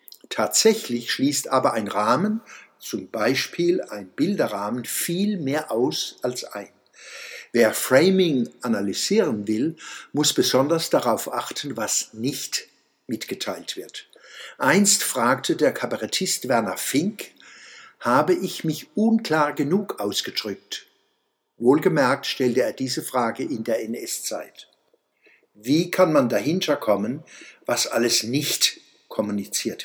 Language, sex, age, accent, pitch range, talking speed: German, male, 60-79, German, 125-185 Hz, 110 wpm